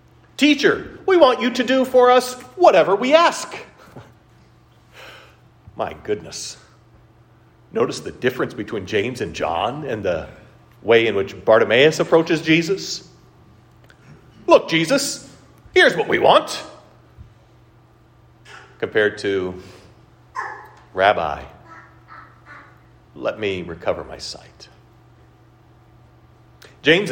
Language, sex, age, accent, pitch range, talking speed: English, male, 40-59, American, 115-145 Hz, 95 wpm